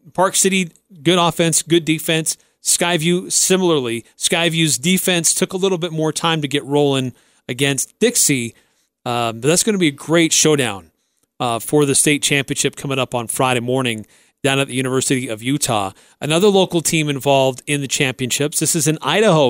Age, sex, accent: 40-59, male, American